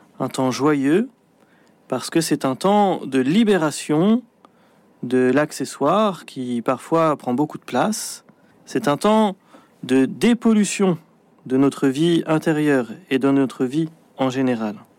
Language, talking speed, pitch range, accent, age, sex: French, 130 wpm, 150-200 Hz, French, 40-59, male